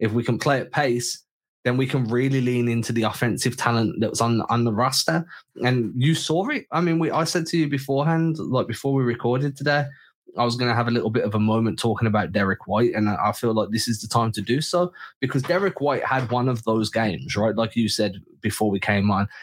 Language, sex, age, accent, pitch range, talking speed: English, male, 20-39, British, 115-135 Hz, 250 wpm